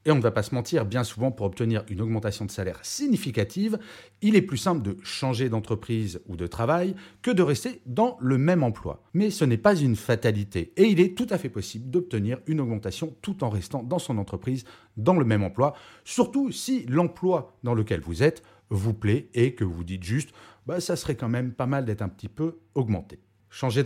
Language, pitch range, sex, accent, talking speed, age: French, 105-165 Hz, male, French, 215 wpm, 40-59